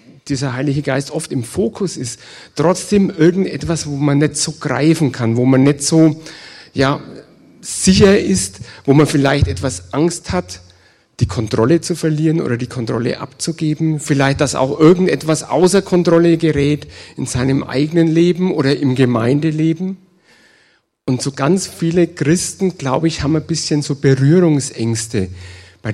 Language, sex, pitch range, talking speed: German, male, 125-160 Hz, 145 wpm